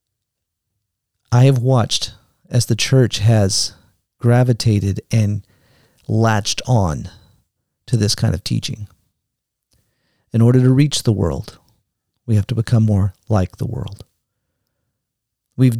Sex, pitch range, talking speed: male, 105-130 Hz, 120 wpm